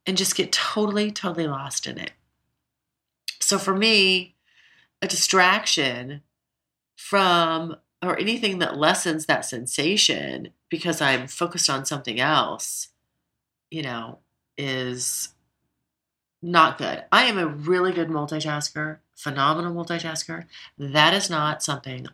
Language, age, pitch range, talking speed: English, 30-49, 135-180 Hz, 115 wpm